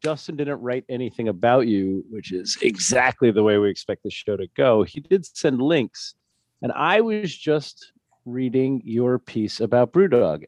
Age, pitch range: 40-59, 95-135 Hz